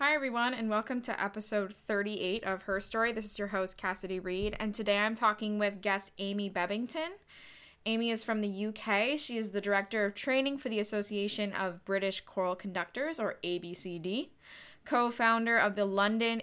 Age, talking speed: 10-29, 175 wpm